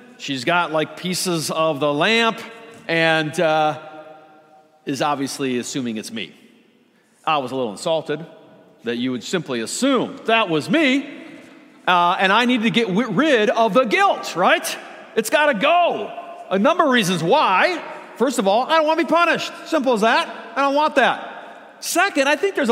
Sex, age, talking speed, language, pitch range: male, 50-69, 175 wpm, English, 155-265 Hz